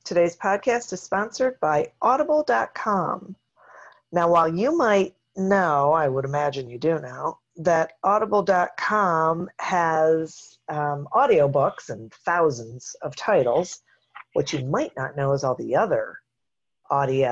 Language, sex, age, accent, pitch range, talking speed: English, female, 40-59, American, 140-175 Hz, 130 wpm